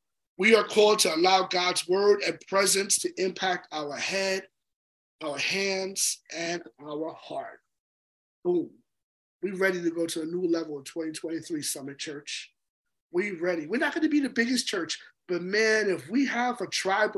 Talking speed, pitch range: 170 wpm, 190-230 Hz